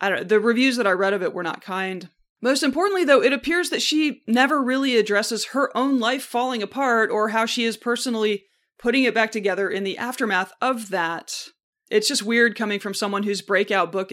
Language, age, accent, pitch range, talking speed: English, 20-39, American, 180-235 Hz, 215 wpm